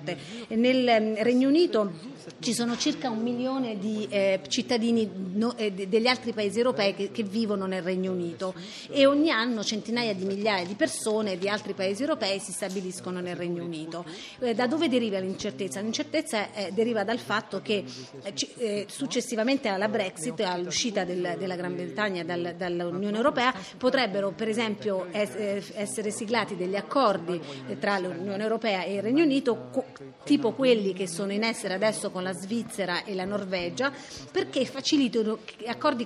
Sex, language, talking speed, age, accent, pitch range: female, Italian, 150 wpm, 30-49, native, 195-235 Hz